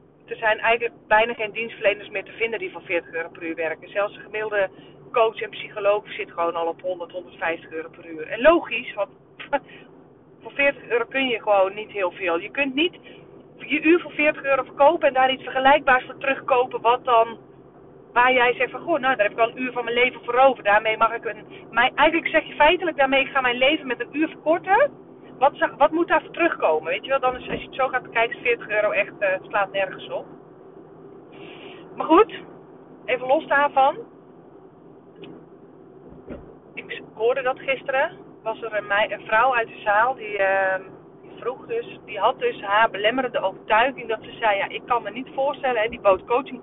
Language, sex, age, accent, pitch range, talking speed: Dutch, female, 40-59, Dutch, 210-300 Hz, 205 wpm